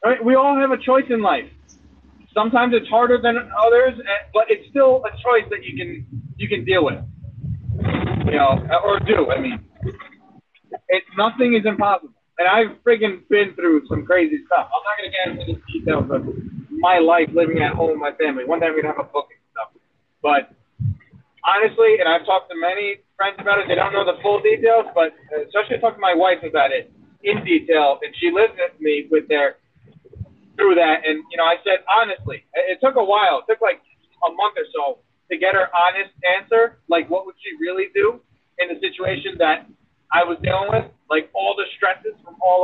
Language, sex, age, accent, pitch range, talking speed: English, male, 30-49, American, 180-265 Hz, 205 wpm